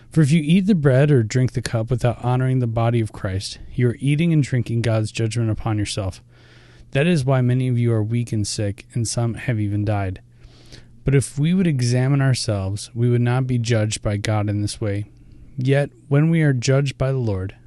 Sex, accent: male, American